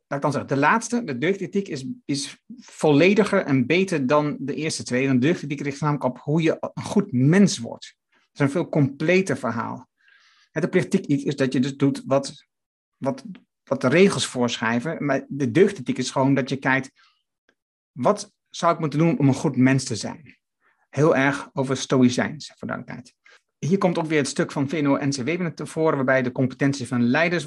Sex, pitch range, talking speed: male, 130-165 Hz, 190 wpm